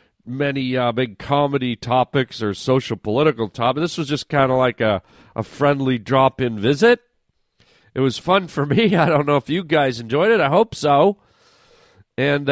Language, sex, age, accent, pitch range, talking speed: English, male, 40-59, American, 120-160 Hz, 175 wpm